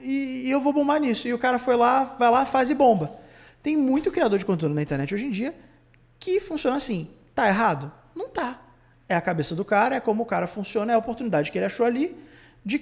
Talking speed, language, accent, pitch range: 235 wpm, Portuguese, Brazilian, 170-280 Hz